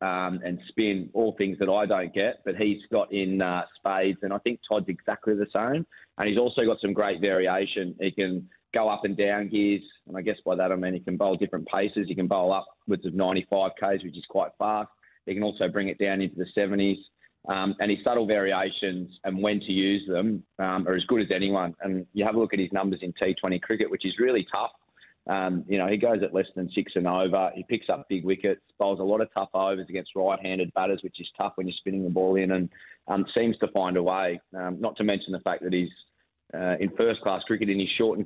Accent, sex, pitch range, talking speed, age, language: Australian, male, 95-105 Hz, 240 wpm, 30-49, English